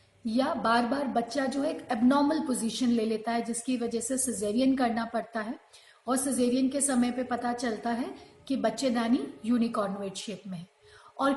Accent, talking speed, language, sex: native, 180 wpm, Hindi, female